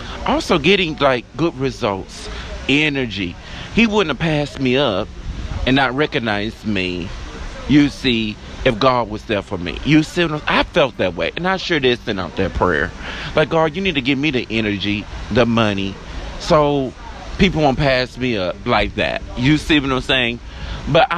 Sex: male